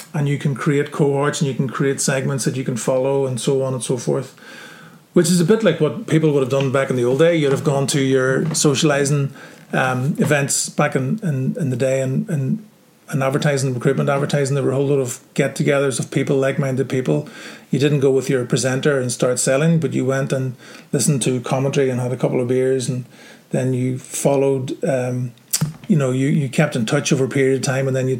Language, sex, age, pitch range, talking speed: English, male, 30-49, 130-155 Hz, 230 wpm